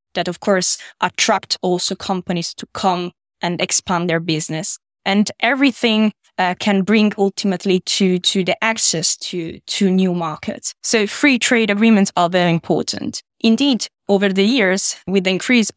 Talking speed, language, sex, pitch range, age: 150 wpm, English, female, 175-210 Hz, 20-39